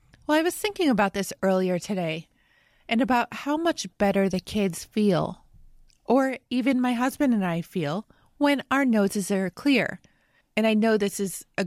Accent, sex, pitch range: American, female, 195-245 Hz